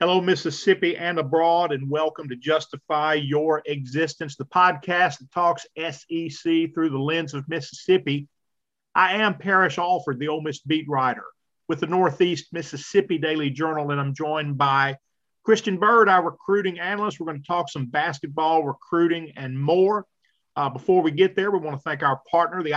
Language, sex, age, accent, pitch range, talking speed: English, male, 40-59, American, 140-175 Hz, 170 wpm